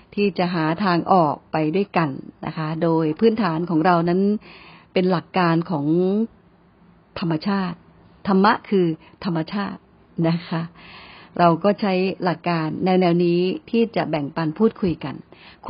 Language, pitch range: Thai, 170-210 Hz